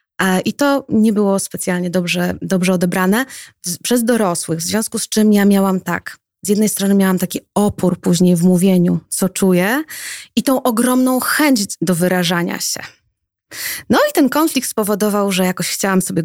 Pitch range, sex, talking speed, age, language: 185-215 Hz, female, 165 wpm, 20-39, Polish